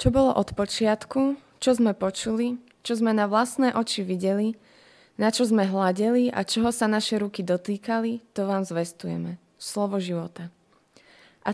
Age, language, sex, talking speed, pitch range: 20-39, Slovak, female, 150 wpm, 180-230 Hz